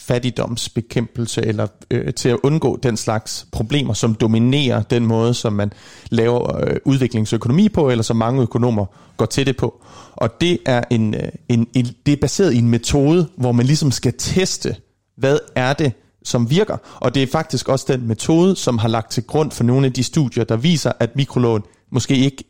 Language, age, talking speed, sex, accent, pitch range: Danish, 30-49, 195 wpm, male, native, 115-140 Hz